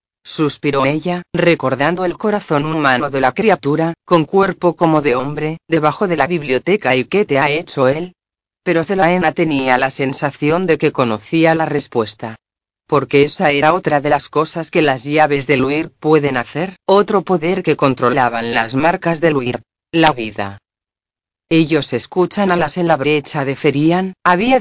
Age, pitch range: 40-59, 130-170 Hz